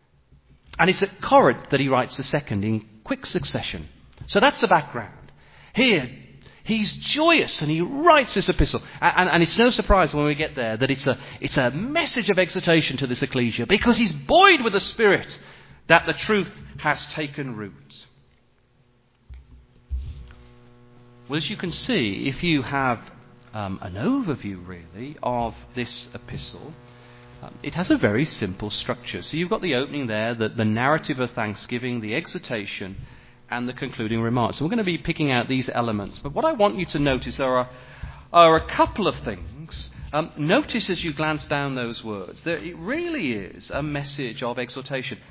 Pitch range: 120-165 Hz